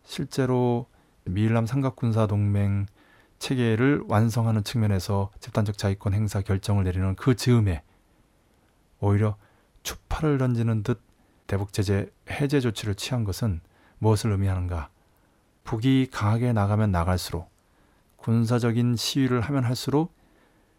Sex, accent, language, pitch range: male, native, Korean, 100-120 Hz